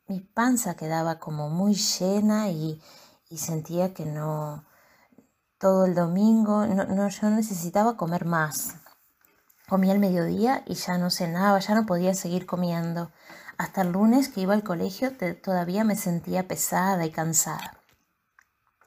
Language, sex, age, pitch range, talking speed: Spanish, female, 20-39, 160-195 Hz, 135 wpm